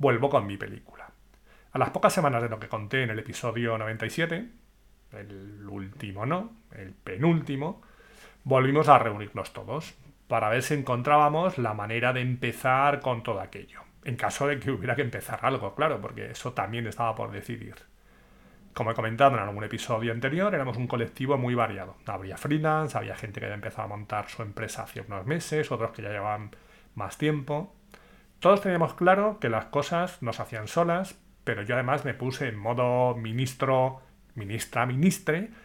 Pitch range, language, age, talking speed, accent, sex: 115-150 Hz, Spanish, 30-49, 170 wpm, Spanish, male